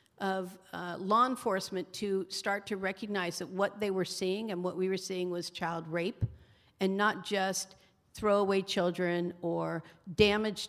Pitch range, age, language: 185-225 Hz, 50-69, English